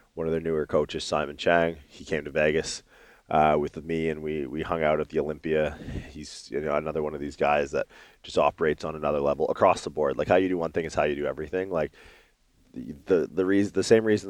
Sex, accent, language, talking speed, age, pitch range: male, American, English, 245 wpm, 20-39, 75-90 Hz